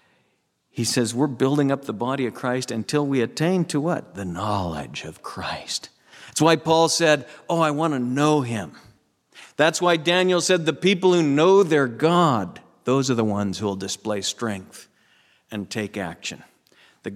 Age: 50-69